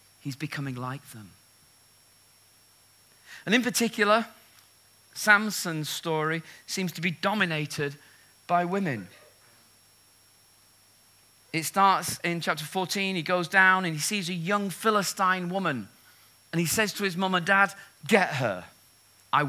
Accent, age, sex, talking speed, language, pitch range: British, 40-59, male, 125 wpm, English, 105-175 Hz